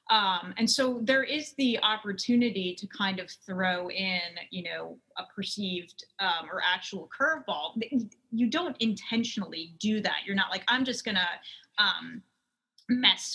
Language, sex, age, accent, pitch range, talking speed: English, female, 30-49, American, 185-240 Hz, 150 wpm